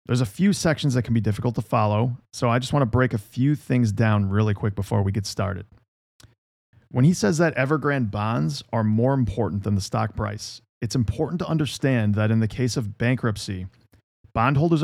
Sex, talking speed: male, 200 wpm